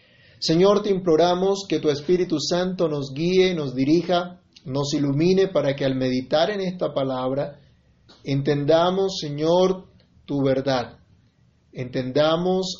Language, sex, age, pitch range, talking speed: Spanish, male, 30-49, 135-180 Hz, 115 wpm